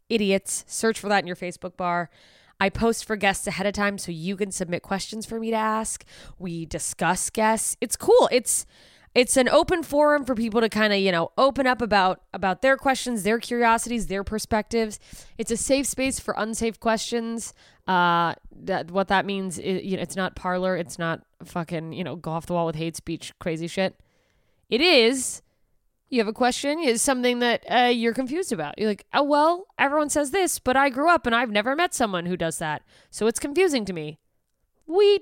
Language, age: English, 20-39